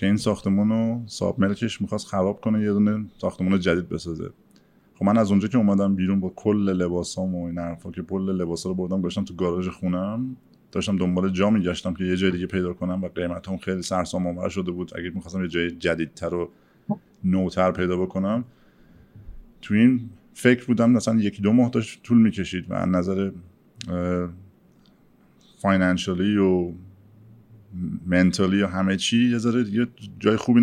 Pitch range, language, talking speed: 90-110 Hz, Persian, 165 wpm